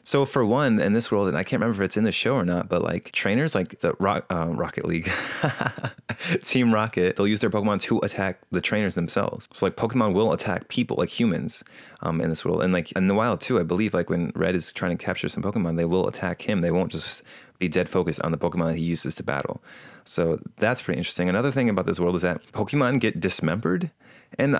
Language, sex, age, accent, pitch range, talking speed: English, male, 20-39, American, 90-115 Hz, 235 wpm